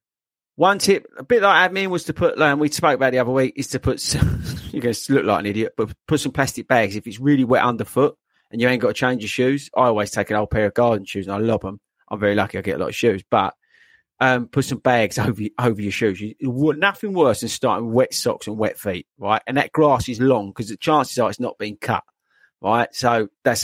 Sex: male